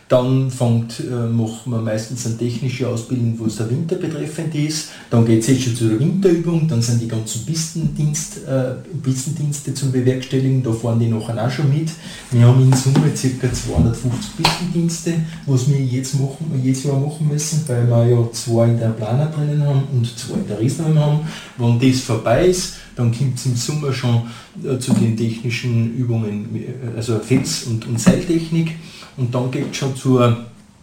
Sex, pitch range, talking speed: male, 120-150 Hz, 180 wpm